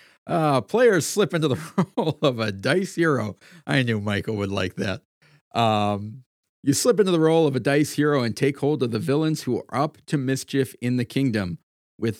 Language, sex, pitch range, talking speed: English, male, 110-150 Hz, 200 wpm